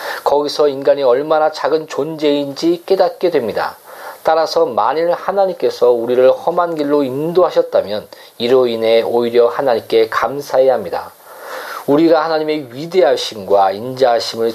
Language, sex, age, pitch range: Korean, male, 40-59, 120-195 Hz